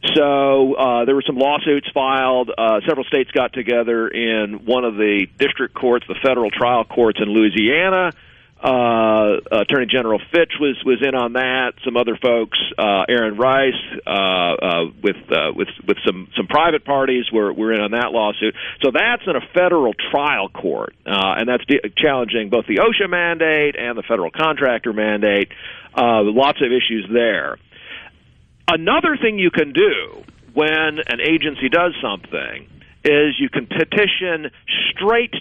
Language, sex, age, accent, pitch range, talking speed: English, male, 50-69, American, 115-155 Hz, 165 wpm